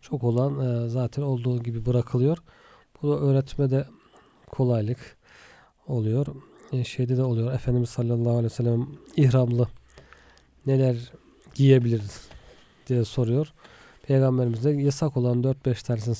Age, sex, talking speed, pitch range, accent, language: 40-59, male, 110 wpm, 120-140 Hz, native, Turkish